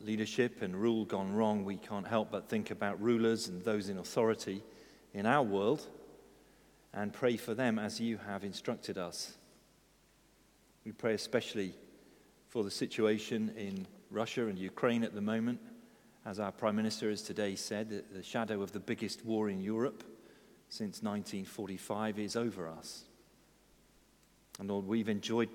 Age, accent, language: 40-59, British, English